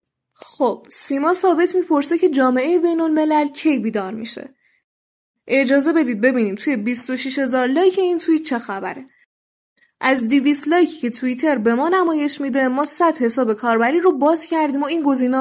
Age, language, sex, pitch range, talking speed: 10-29, Persian, female, 240-305 Hz, 160 wpm